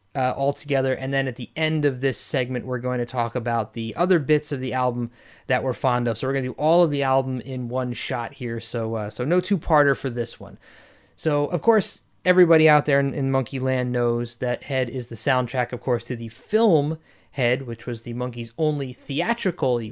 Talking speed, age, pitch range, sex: 225 wpm, 30-49, 120-155 Hz, male